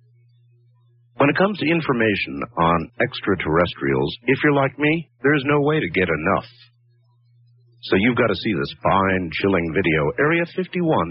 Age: 50-69